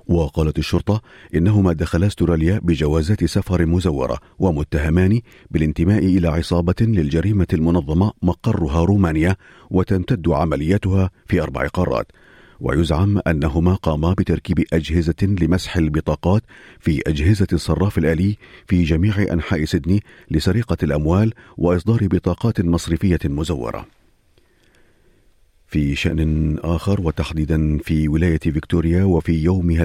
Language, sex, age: Arabic, male, 40-59